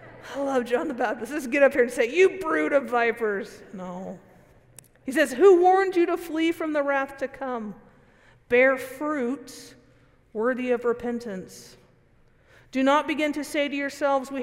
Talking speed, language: 170 wpm, English